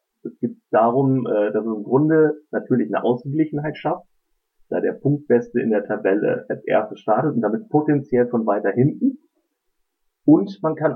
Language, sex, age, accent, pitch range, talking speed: German, male, 40-59, German, 110-155 Hz, 160 wpm